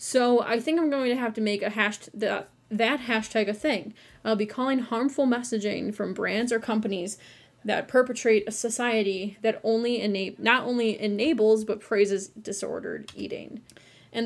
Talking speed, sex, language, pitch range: 175 wpm, female, English, 205-240 Hz